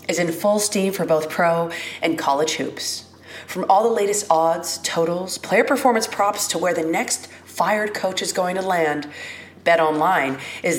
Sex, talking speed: female, 180 wpm